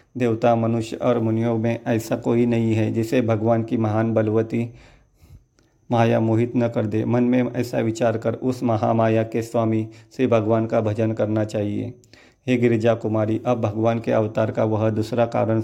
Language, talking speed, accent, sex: Hindi, 175 wpm, native, male